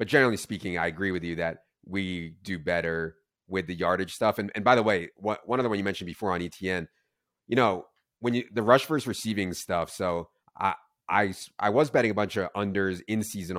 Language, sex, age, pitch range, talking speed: English, male, 30-49, 90-110 Hz, 215 wpm